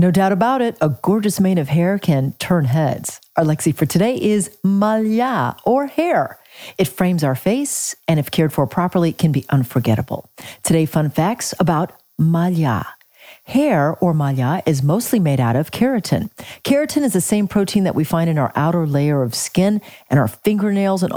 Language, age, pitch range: English, 40-59, 160-220 Hz